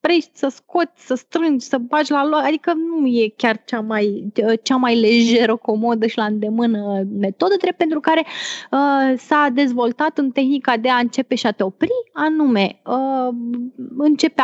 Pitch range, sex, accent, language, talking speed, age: 220-285 Hz, female, native, Romanian, 170 wpm, 20-39